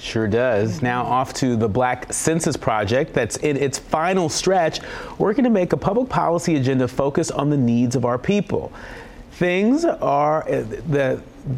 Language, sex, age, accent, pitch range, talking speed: English, male, 40-59, American, 120-155 Hz, 155 wpm